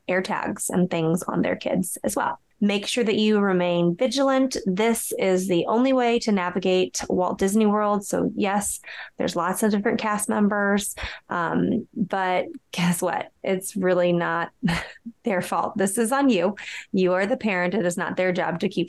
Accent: American